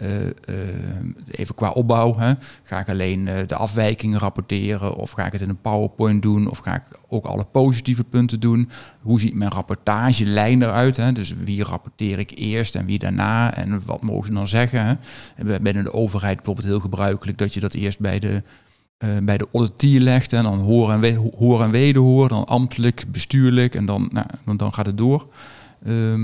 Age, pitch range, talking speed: 40-59, 100-120 Hz, 195 wpm